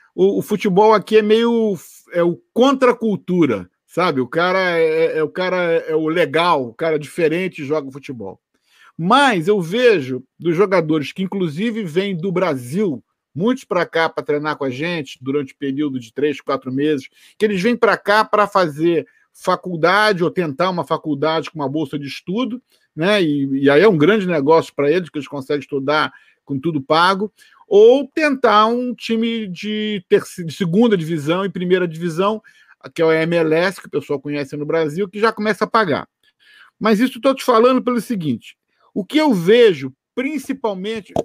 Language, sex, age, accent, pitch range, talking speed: Portuguese, male, 50-69, Brazilian, 160-220 Hz, 185 wpm